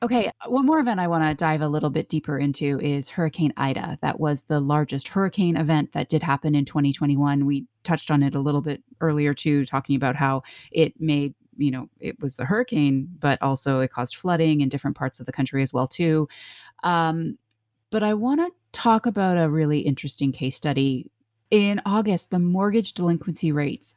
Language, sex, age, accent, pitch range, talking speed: English, female, 30-49, American, 135-165 Hz, 200 wpm